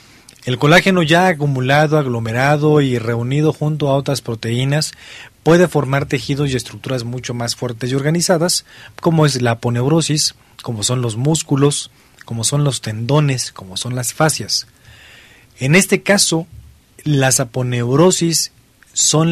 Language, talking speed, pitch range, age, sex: Spanish, 135 wpm, 120-150 Hz, 40-59, male